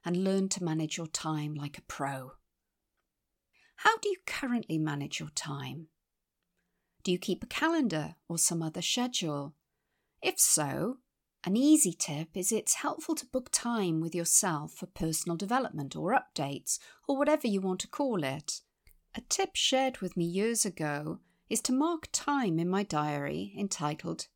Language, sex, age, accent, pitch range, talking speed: English, female, 50-69, British, 155-235 Hz, 160 wpm